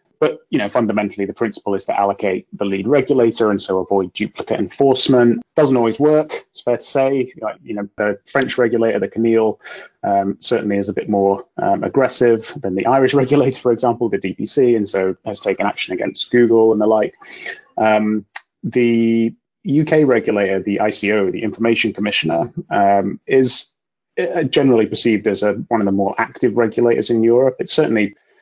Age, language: 30-49, English